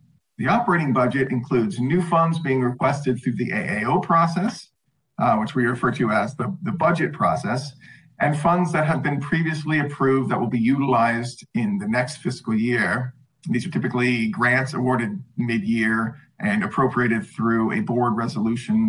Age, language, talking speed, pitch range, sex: 40-59, English, 160 wpm, 125-165 Hz, male